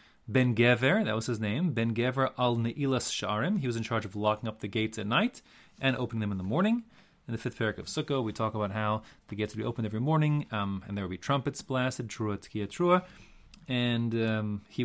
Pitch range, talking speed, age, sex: 105-130 Hz, 225 wpm, 30-49, male